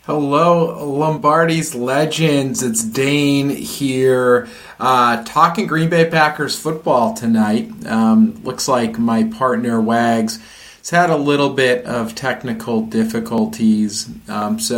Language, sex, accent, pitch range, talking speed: English, male, American, 115-150 Hz, 120 wpm